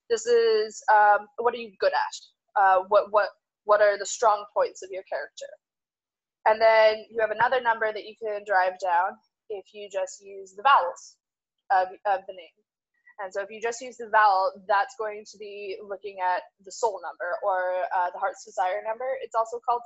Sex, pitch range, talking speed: female, 195-250 Hz, 200 wpm